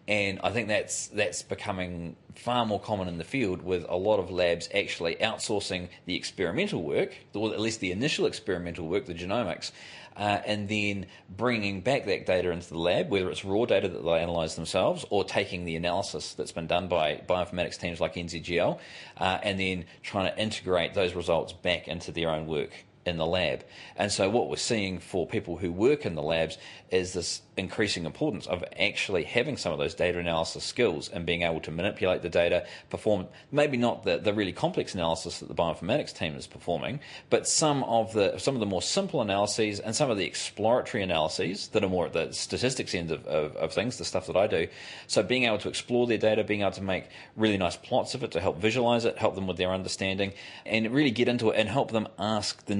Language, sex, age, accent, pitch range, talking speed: English, male, 30-49, Australian, 85-110 Hz, 215 wpm